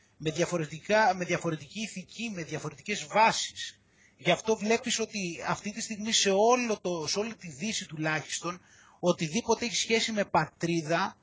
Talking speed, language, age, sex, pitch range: 150 wpm, Greek, 30-49, male, 165-225 Hz